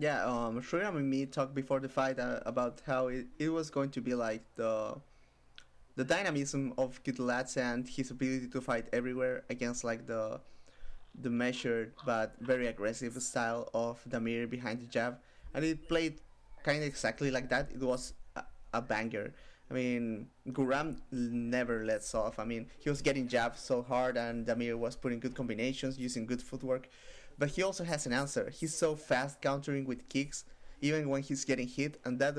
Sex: male